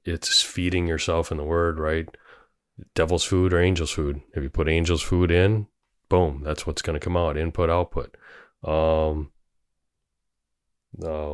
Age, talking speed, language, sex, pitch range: 30-49, 155 wpm, English, male, 80-90 Hz